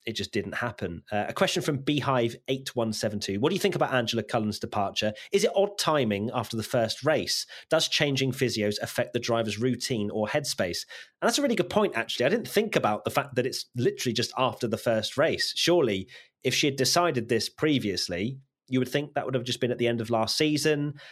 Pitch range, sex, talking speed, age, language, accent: 105-140 Hz, male, 215 wpm, 30-49, English, British